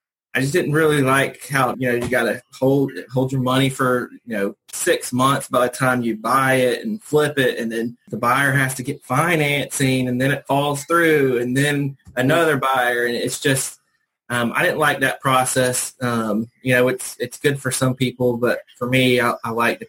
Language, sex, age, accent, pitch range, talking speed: English, male, 20-39, American, 120-135 Hz, 215 wpm